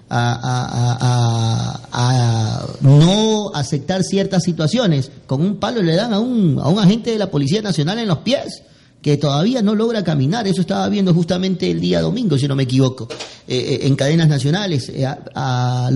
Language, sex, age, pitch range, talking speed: Spanish, male, 40-59, 135-175 Hz, 180 wpm